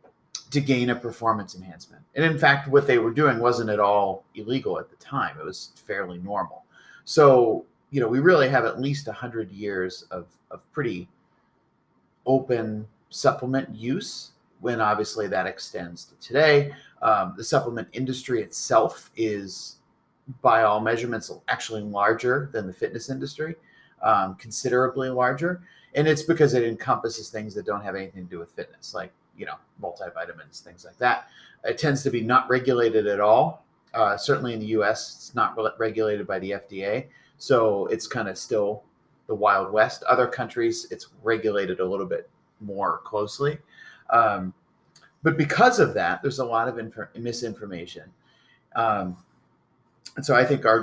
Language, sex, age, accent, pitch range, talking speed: English, male, 30-49, American, 105-140 Hz, 160 wpm